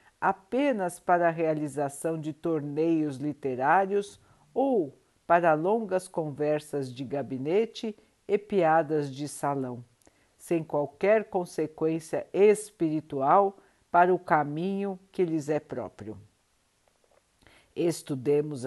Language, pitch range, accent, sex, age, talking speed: Portuguese, 145-185 Hz, Brazilian, female, 60-79, 95 wpm